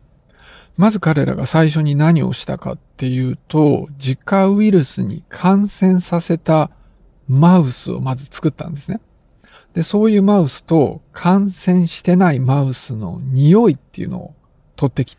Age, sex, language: 50-69, male, Japanese